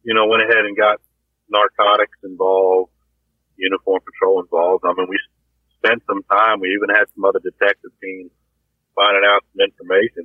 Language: English